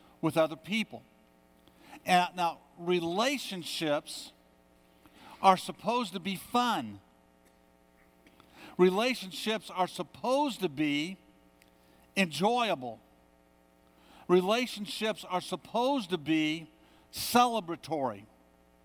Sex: male